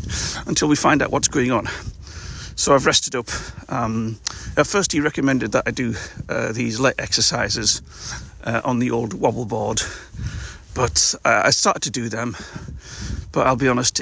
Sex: male